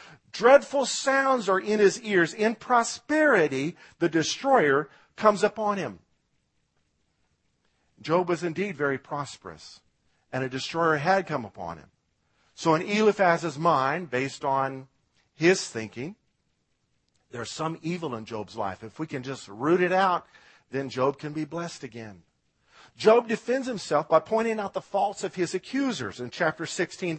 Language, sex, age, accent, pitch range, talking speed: English, male, 50-69, American, 135-210 Hz, 145 wpm